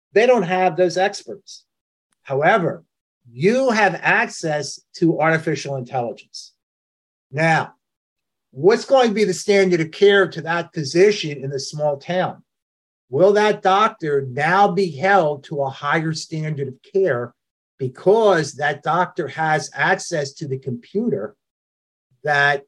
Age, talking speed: 50-69, 130 wpm